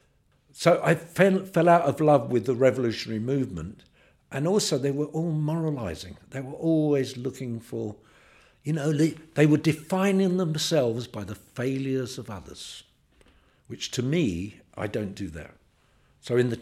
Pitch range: 95-135 Hz